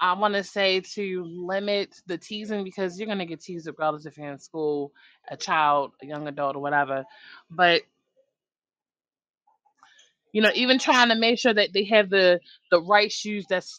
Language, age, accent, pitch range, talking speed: English, 20-39, American, 165-225 Hz, 180 wpm